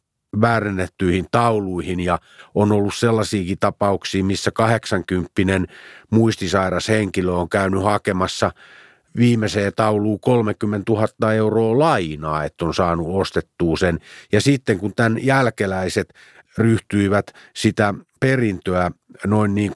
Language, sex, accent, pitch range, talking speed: Finnish, male, native, 95-115 Hz, 105 wpm